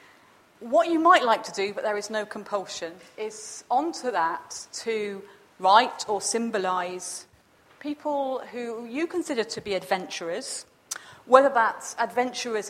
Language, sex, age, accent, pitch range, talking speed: English, female, 40-59, British, 195-245 Hz, 130 wpm